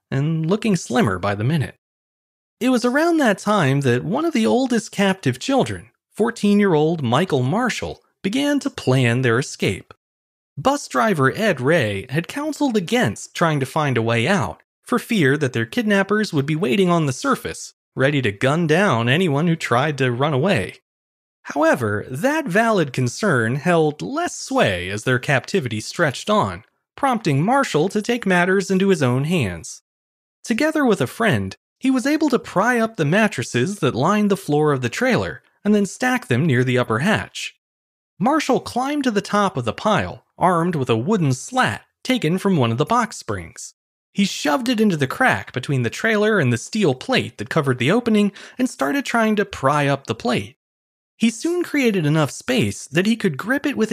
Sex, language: male, English